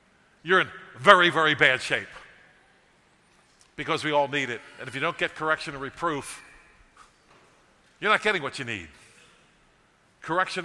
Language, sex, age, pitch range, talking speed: English, male, 50-69, 140-195 Hz, 145 wpm